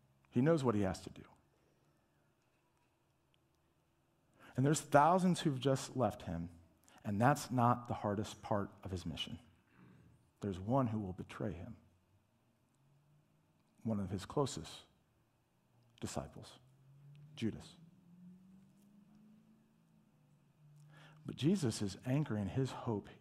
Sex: male